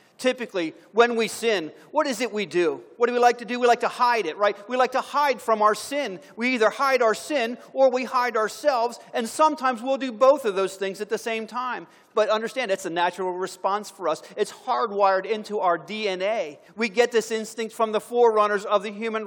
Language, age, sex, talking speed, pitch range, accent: English, 40-59, male, 225 wpm, 190-240 Hz, American